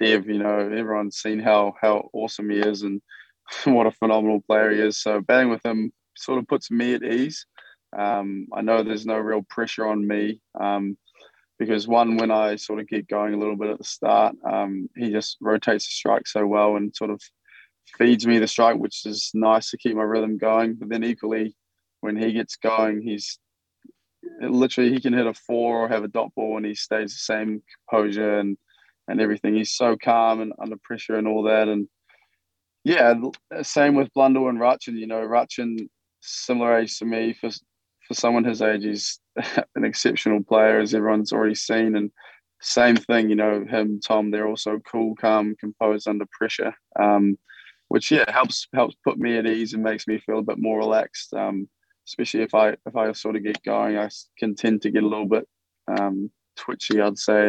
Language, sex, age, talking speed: English, male, 20-39, 200 wpm